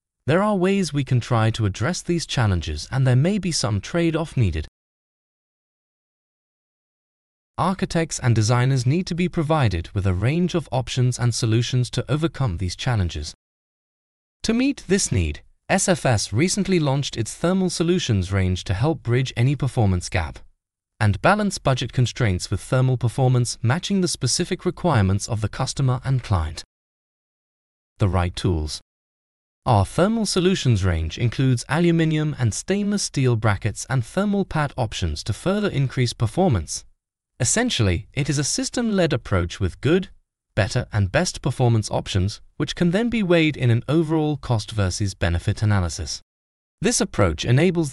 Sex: male